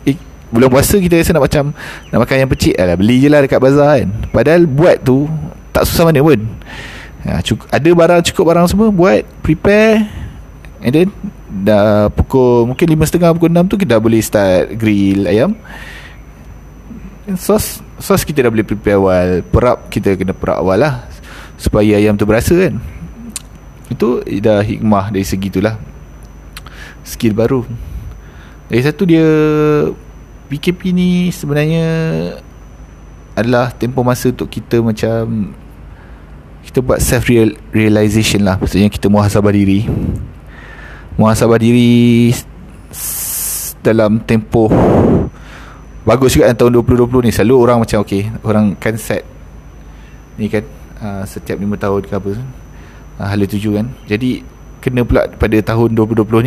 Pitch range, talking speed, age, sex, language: 100-140 Hz, 140 wpm, 20-39, male, Malay